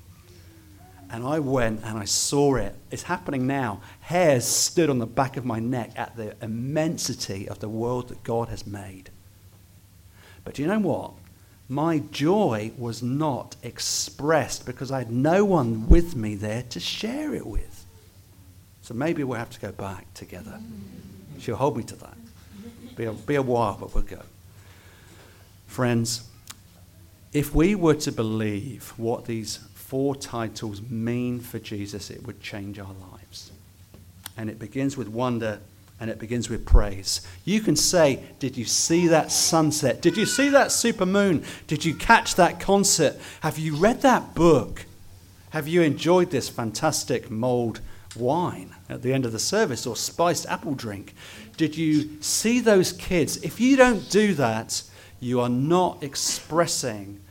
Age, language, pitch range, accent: 50-69, English, 100-145 Hz, British